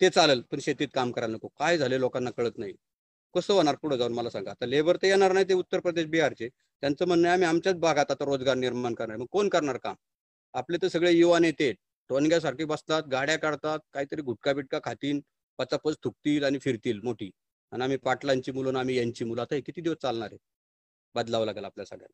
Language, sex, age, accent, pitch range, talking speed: English, male, 40-59, Indian, 130-170 Hz, 80 wpm